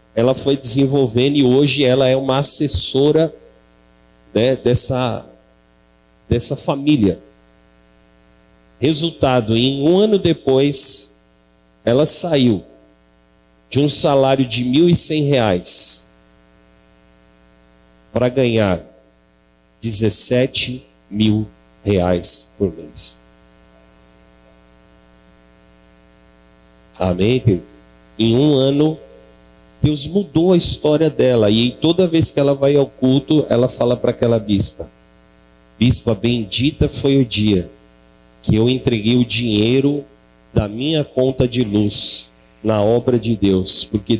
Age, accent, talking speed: 40-59, Brazilian, 100 wpm